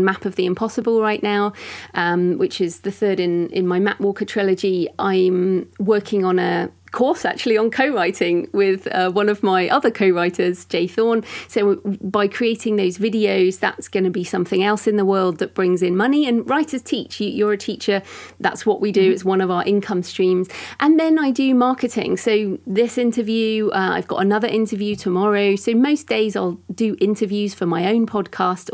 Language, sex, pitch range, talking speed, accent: English, female, 185-220 Hz, 190 wpm, British